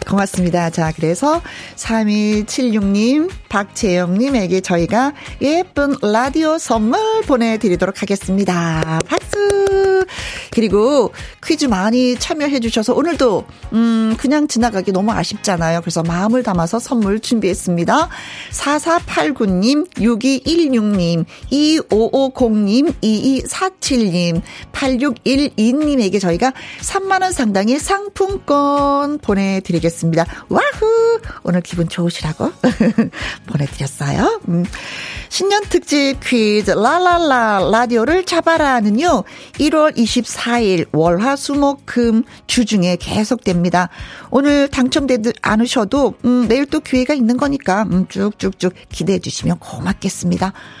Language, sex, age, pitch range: Korean, female, 40-59, 190-285 Hz